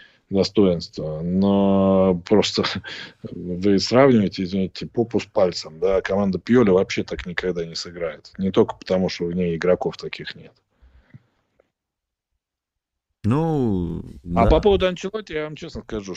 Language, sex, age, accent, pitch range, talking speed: Russian, male, 20-39, native, 90-110 Hz, 130 wpm